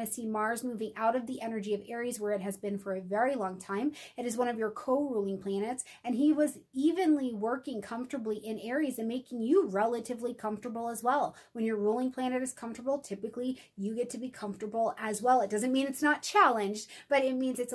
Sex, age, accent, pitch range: female, 30-49, American, 210-255 Hz